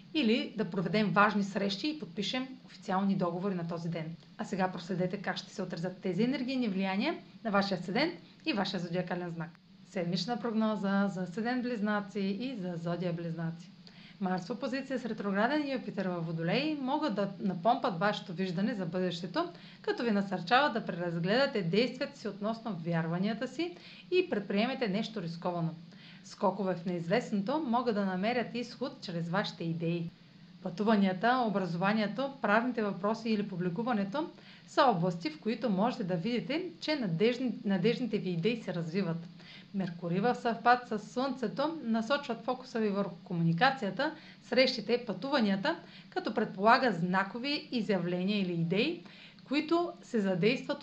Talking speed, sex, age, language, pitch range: 135 wpm, female, 30-49, Bulgarian, 185-235 Hz